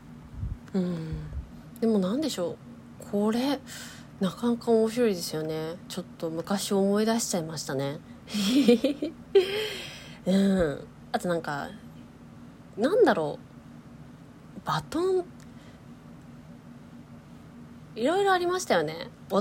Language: Japanese